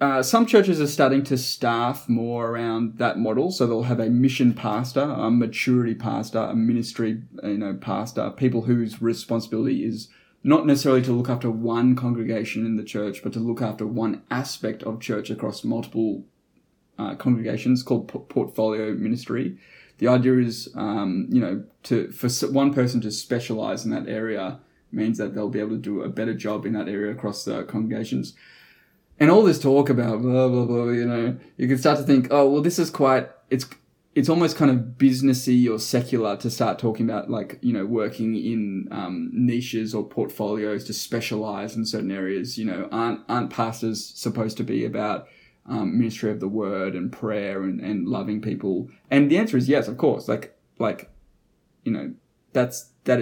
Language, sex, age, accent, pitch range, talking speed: English, male, 20-39, Australian, 110-125 Hz, 185 wpm